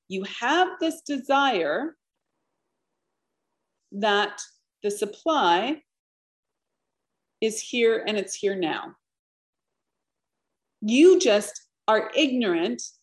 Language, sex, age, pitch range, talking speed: English, female, 40-59, 215-330 Hz, 80 wpm